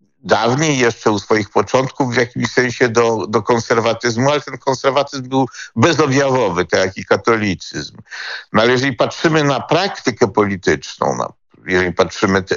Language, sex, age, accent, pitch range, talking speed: Polish, male, 50-69, native, 115-145 Hz, 140 wpm